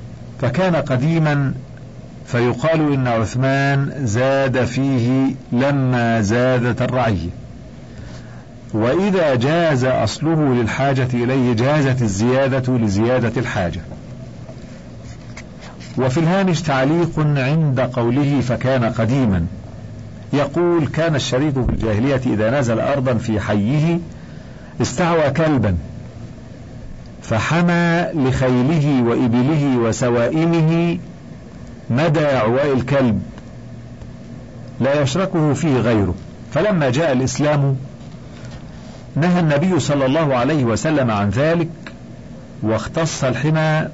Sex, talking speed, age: male, 85 wpm, 50-69